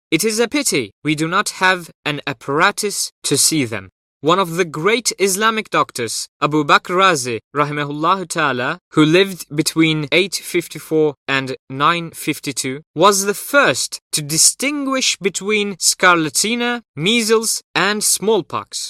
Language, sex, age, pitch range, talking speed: English, male, 20-39, 150-225 Hz, 125 wpm